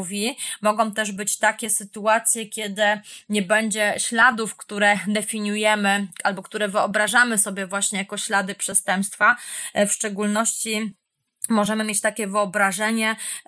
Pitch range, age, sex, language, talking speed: 200-220 Hz, 20-39, female, Polish, 110 wpm